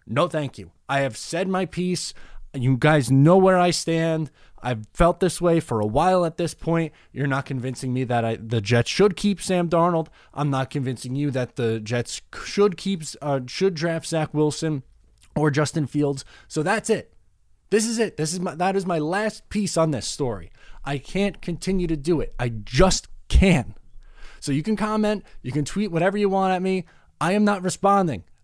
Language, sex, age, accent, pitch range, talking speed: English, male, 20-39, American, 115-170 Hz, 200 wpm